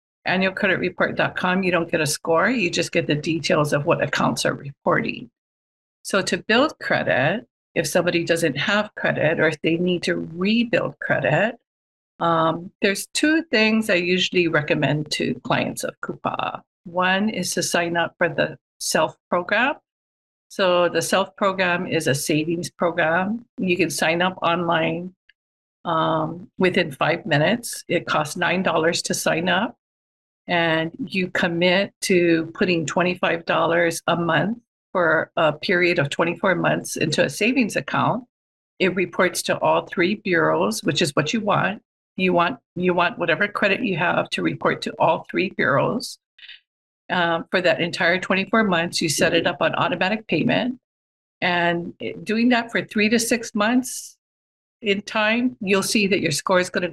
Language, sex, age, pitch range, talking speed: English, female, 50-69, 165-195 Hz, 155 wpm